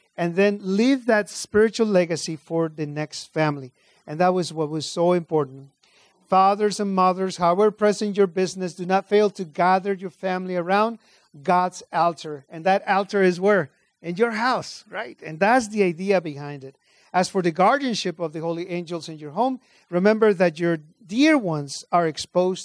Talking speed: 180 wpm